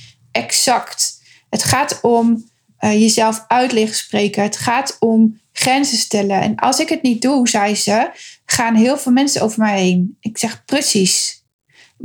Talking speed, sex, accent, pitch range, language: 160 wpm, female, Dutch, 215-255 Hz, Dutch